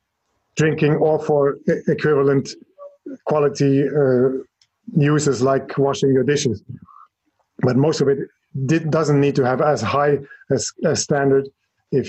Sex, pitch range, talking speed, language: male, 135-155 Hz, 125 wpm, English